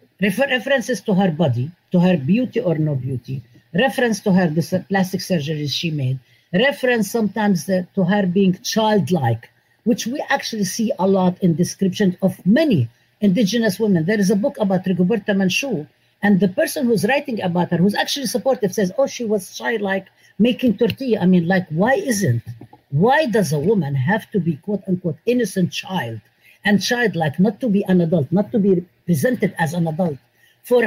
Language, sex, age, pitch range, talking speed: English, female, 50-69, 175-230 Hz, 180 wpm